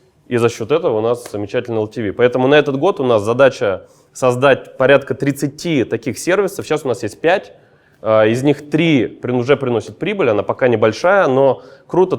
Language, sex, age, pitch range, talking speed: Russian, male, 20-39, 120-145 Hz, 175 wpm